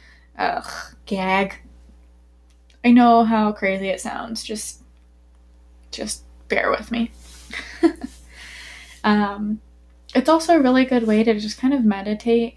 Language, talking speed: English, 120 wpm